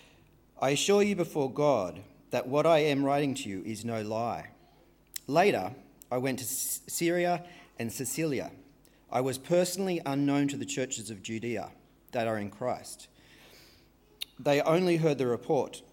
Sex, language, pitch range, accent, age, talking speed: male, English, 110-150 Hz, Australian, 40-59, 150 wpm